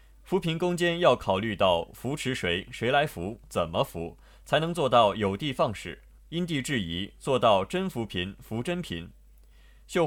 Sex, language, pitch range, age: male, Chinese, 90-150 Hz, 20-39